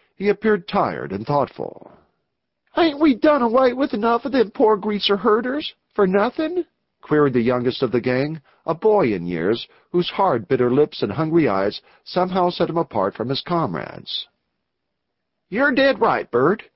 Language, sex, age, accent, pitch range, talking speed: English, male, 50-69, American, 125-205 Hz, 165 wpm